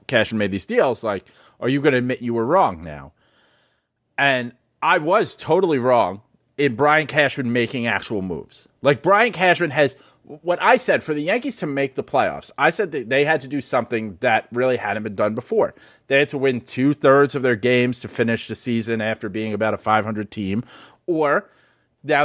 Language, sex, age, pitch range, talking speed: English, male, 30-49, 110-145 Hz, 200 wpm